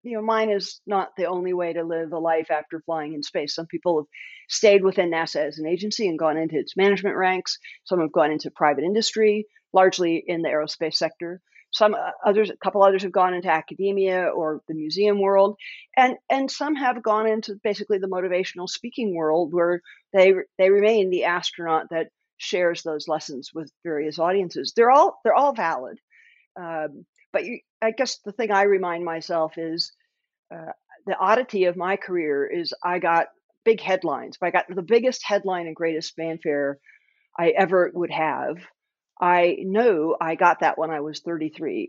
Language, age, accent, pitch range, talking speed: English, 50-69, American, 165-205 Hz, 185 wpm